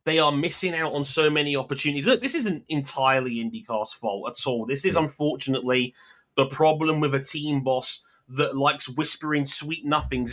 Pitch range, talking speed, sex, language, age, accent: 135-185 Hz, 175 wpm, male, English, 20-39, British